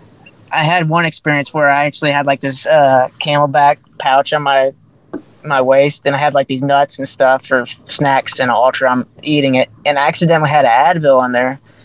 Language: English